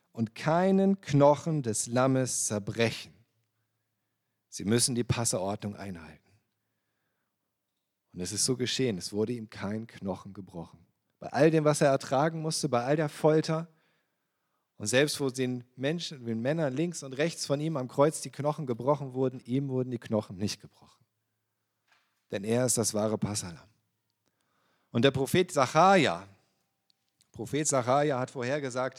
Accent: German